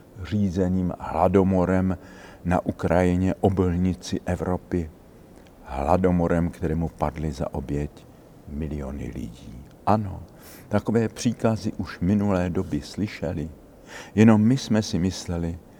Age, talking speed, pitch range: 60-79, 95 wpm, 85-105 Hz